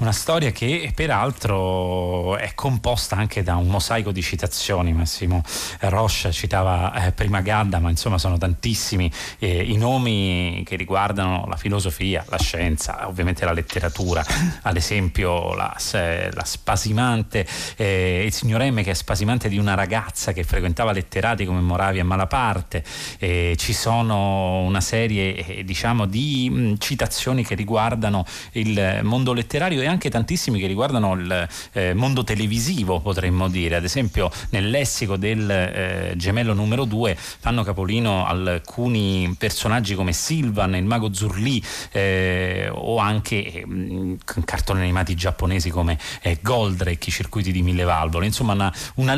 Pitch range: 90-115 Hz